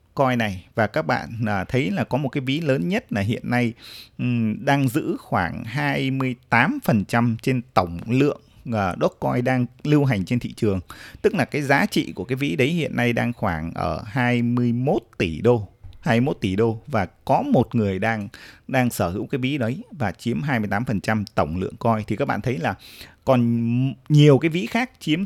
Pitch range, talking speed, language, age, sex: 105-135 Hz, 190 wpm, Vietnamese, 20-39, male